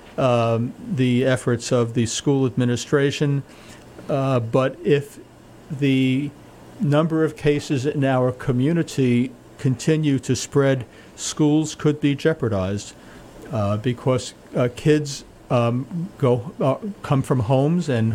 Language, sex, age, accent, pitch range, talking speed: English, male, 50-69, American, 115-140 Hz, 115 wpm